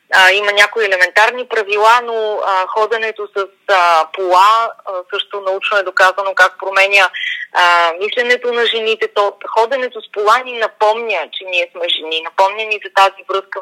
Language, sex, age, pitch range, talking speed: Bulgarian, female, 20-39, 200-265 Hz, 160 wpm